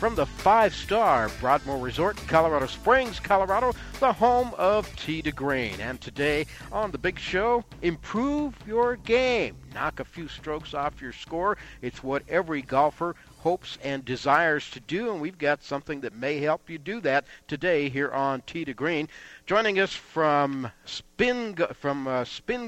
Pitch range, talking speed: 135-195 Hz, 165 wpm